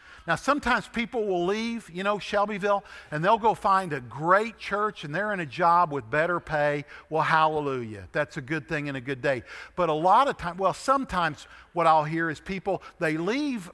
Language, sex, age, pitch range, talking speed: English, male, 50-69, 155-205 Hz, 205 wpm